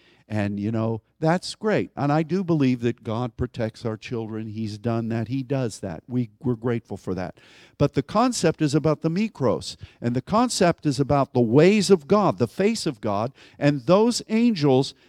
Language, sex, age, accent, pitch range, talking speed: English, male, 50-69, American, 140-205 Hz, 190 wpm